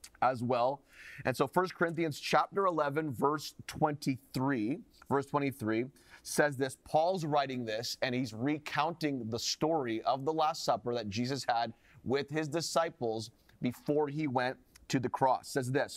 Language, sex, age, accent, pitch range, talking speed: English, male, 30-49, American, 125-150 Hz, 150 wpm